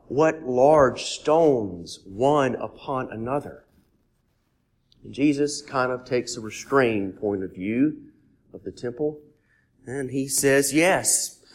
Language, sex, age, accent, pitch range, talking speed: English, male, 40-59, American, 115-155 Hz, 115 wpm